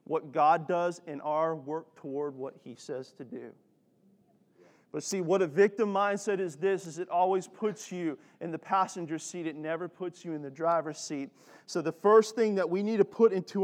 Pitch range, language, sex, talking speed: 150-190 Hz, English, male, 205 wpm